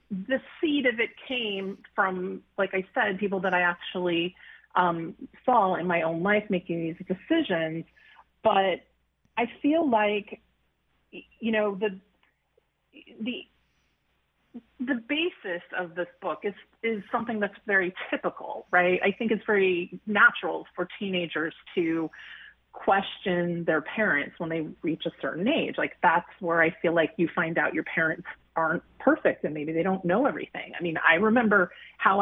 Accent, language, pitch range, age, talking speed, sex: American, English, 170-215 Hz, 30-49, 155 wpm, female